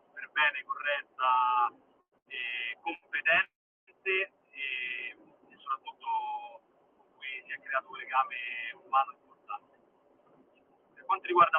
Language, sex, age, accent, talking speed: Italian, male, 30-49, native, 100 wpm